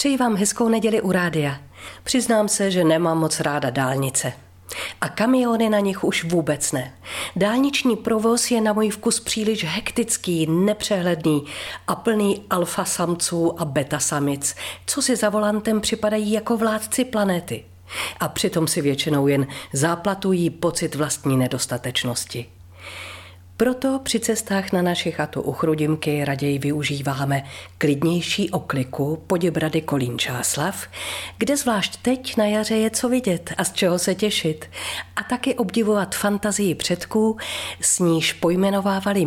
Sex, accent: female, native